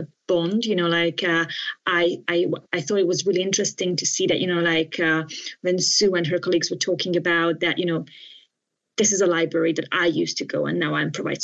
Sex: female